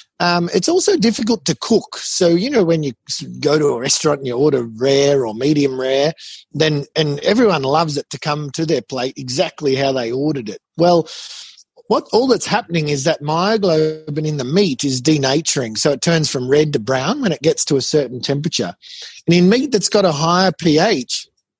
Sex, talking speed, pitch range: male, 200 wpm, 140-180 Hz